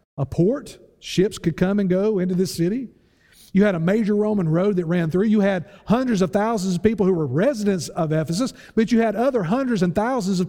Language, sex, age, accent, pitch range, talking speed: English, male, 50-69, American, 155-210 Hz, 225 wpm